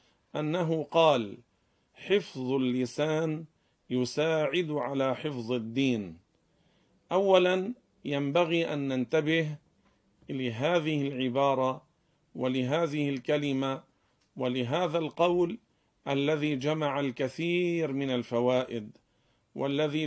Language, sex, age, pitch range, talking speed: Arabic, male, 50-69, 130-165 Hz, 70 wpm